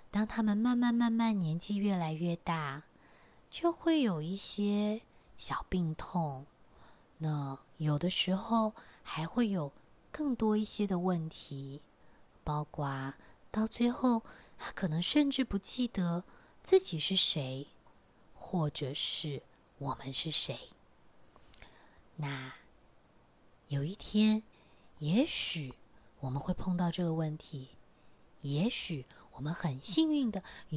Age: 20-39